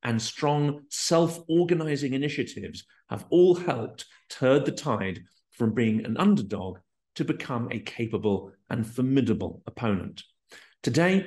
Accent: British